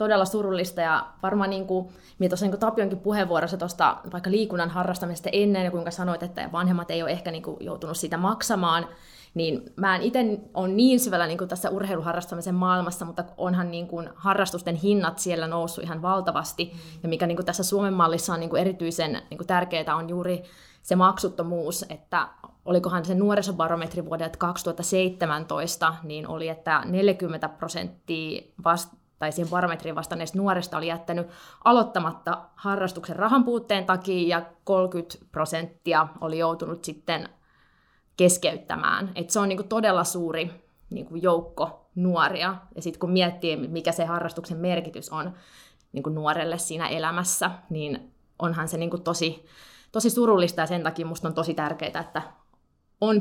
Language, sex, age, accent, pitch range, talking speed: Finnish, female, 20-39, native, 165-185 Hz, 140 wpm